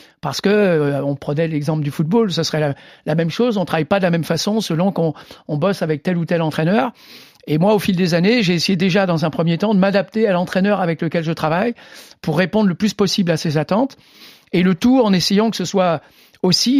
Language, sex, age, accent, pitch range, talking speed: French, male, 60-79, French, 165-205 Hz, 245 wpm